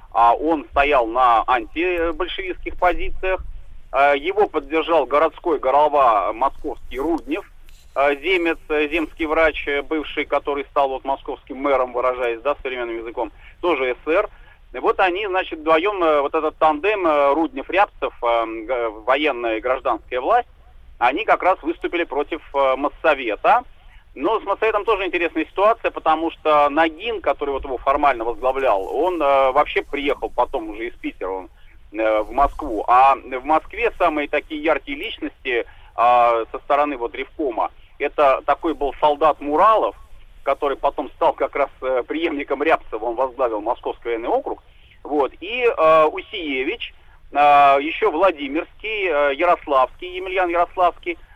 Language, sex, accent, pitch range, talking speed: Russian, male, native, 140-190 Hz, 130 wpm